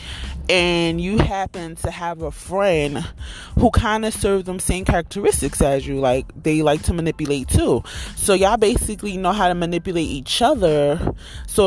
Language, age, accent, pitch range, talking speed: English, 20-39, American, 155-215 Hz, 165 wpm